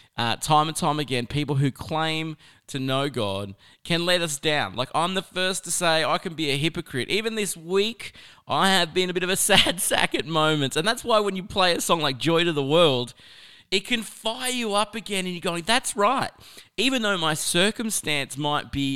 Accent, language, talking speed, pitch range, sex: Australian, English, 220 wpm, 135-185 Hz, male